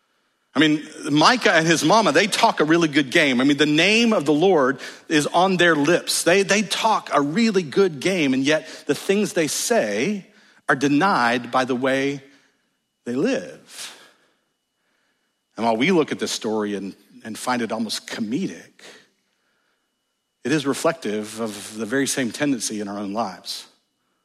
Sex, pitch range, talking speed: male, 125-180 Hz, 170 wpm